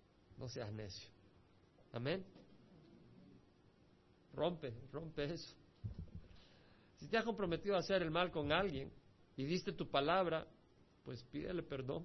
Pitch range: 110-175 Hz